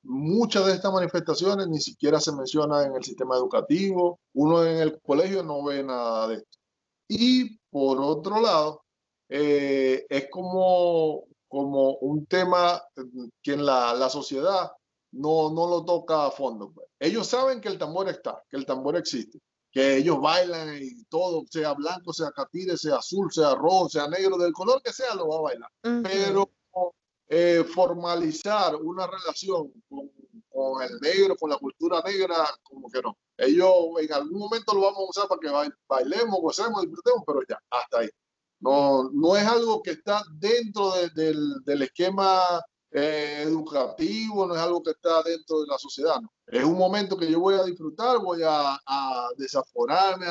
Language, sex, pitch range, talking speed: Spanish, male, 145-195 Hz, 170 wpm